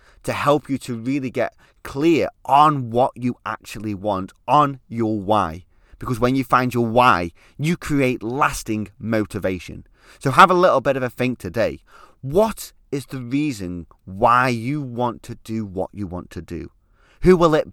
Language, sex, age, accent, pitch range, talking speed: English, male, 30-49, British, 100-130 Hz, 175 wpm